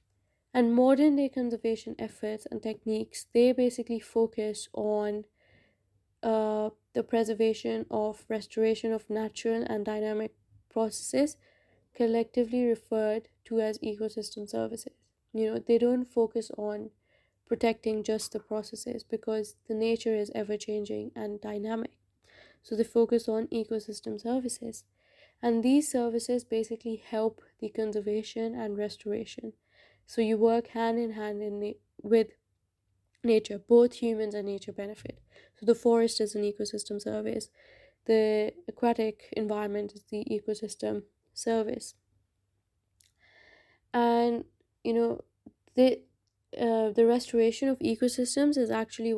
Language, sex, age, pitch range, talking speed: English, female, 20-39, 210-235 Hz, 120 wpm